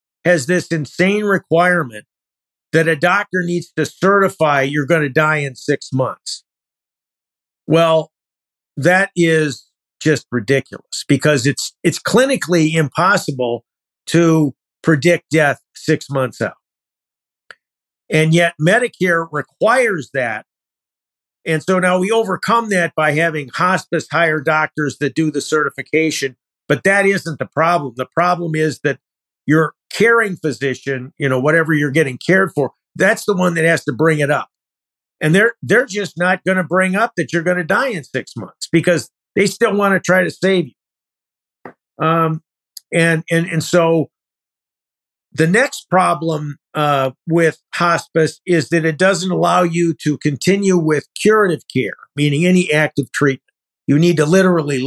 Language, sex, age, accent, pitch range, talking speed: English, male, 50-69, American, 145-180 Hz, 150 wpm